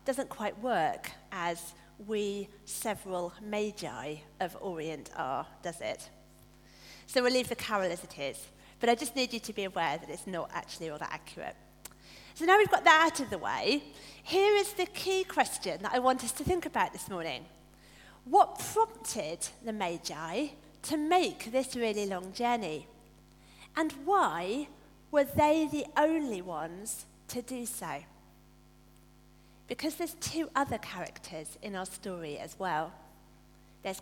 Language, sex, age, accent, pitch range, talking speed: English, female, 40-59, British, 185-295 Hz, 155 wpm